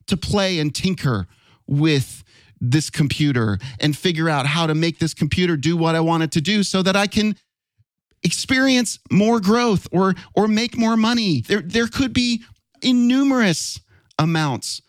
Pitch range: 115-165 Hz